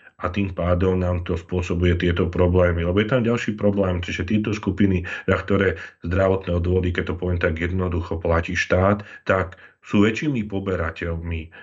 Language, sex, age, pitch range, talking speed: Slovak, male, 40-59, 85-95 Hz, 160 wpm